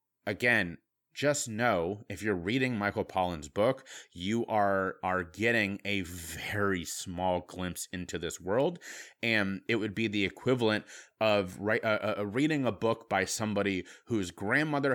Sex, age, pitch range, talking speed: male, 30-49, 95-115 Hz, 150 wpm